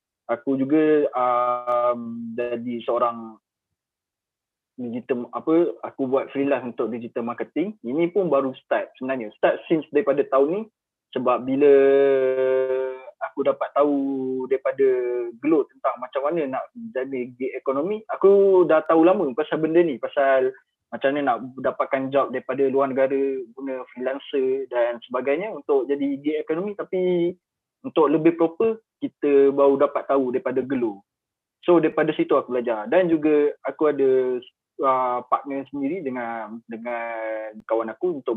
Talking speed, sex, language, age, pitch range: 140 wpm, male, Malay, 20-39, 130-155 Hz